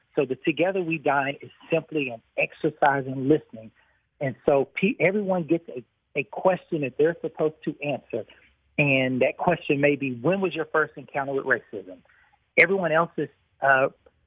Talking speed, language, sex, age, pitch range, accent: 160 wpm, English, male, 40-59, 135-165 Hz, American